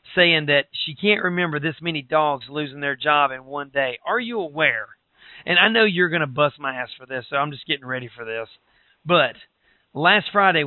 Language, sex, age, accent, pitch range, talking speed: English, male, 40-59, American, 140-170 Hz, 215 wpm